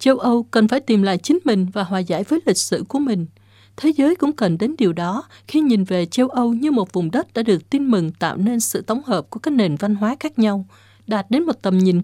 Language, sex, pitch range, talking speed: Vietnamese, female, 180-250 Hz, 265 wpm